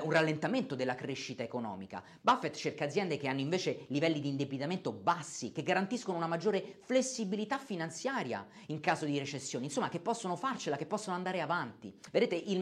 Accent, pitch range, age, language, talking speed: native, 140-195 Hz, 40-59, Italian, 165 wpm